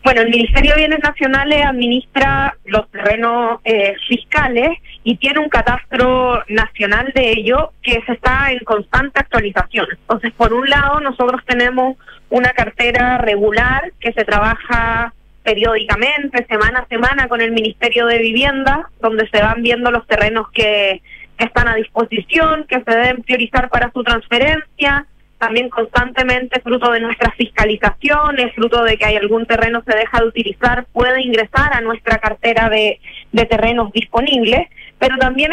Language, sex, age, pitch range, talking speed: Spanish, female, 20-39, 225-265 Hz, 150 wpm